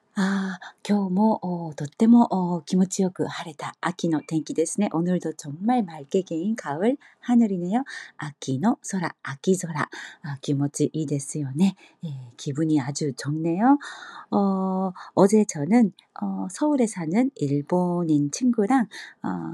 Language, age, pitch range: Korean, 40-59, 155-220 Hz